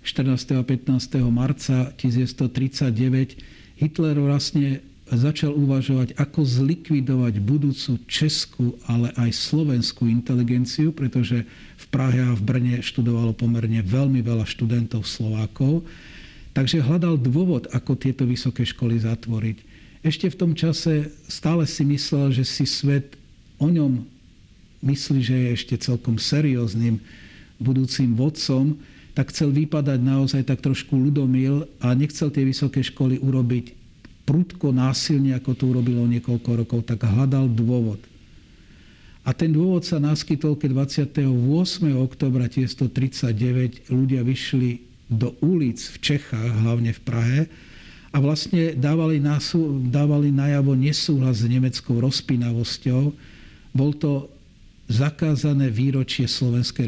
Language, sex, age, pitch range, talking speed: Slovak, male, 60-79, 120-145 Hz, 120 wpm